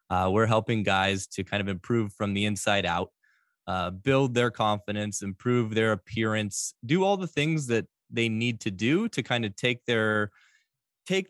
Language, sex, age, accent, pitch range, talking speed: English, male, 20-39, American, 100-120 Hz, 180 wpm